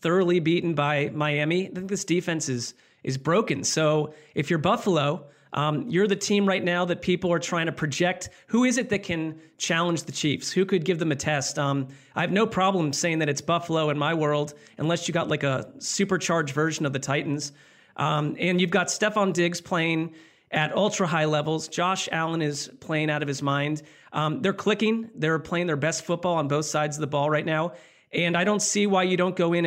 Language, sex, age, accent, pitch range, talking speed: English, male, 30-49, American, 155-190 Hz, 215 wpm